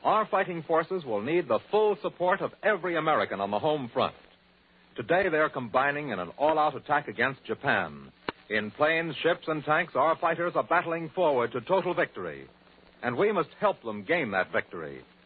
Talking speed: 175 wpm